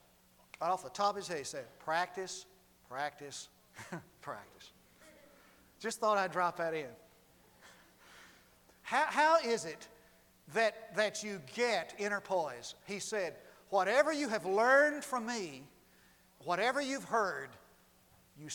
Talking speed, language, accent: 130 wpm, English, American